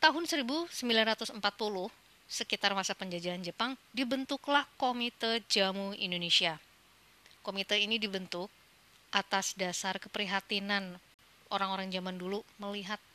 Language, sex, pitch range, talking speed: Indonesian, female, 185-230 Hz, 90 wpm